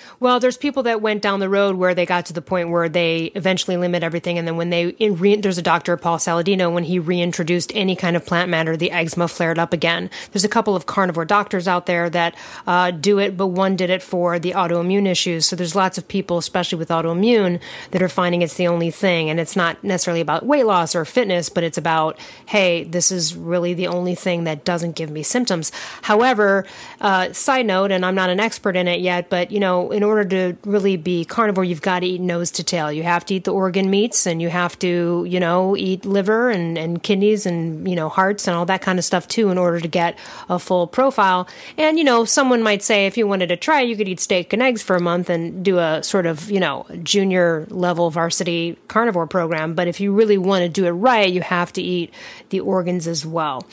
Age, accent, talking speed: 30-49, American, 240 wpm